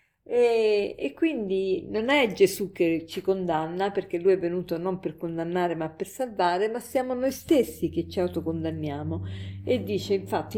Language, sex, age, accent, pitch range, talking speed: Italian, female, 50-69, native, 175-240 Hz, 165 wpm